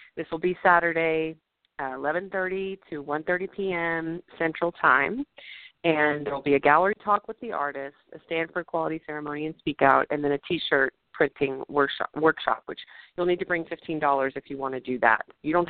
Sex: female